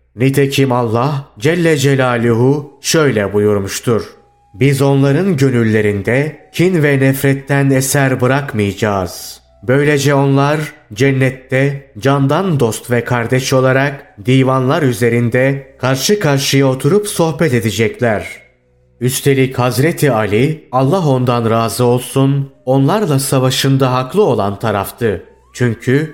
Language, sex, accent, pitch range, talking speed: Turkish, male, native, 120-140 Hz, 95 wpm